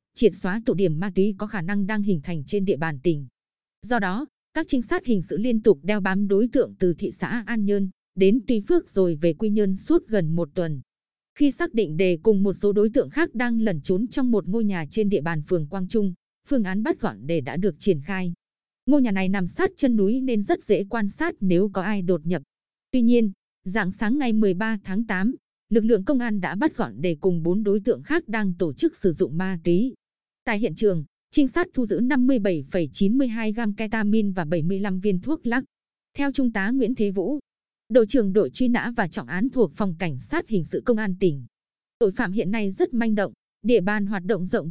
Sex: female